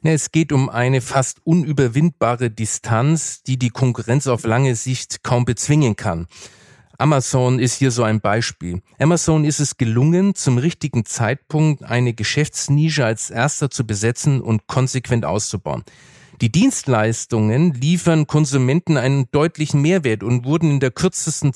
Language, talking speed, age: German, 140 wpm, 40-59